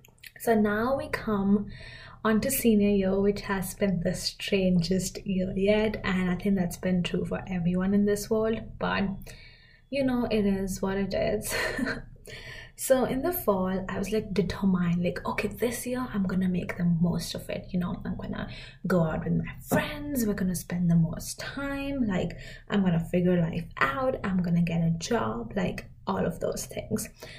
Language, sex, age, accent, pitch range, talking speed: English, female, 20-39, Indian, 180-210 Hz, 185 wpm